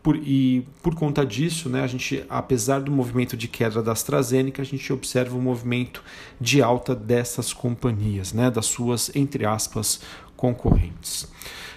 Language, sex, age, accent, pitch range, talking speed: Portuguese, male, 40-59, Brazilian, 115-135 Hz, 140 wpm